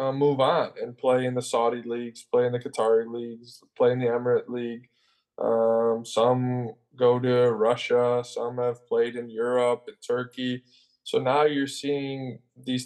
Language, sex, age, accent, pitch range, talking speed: English, male, 20-39, American, 115-135 Hz, 165 wpm